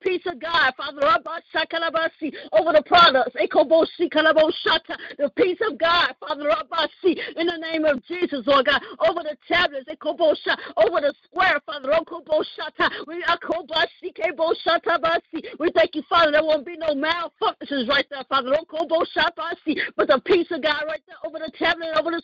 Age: 50-69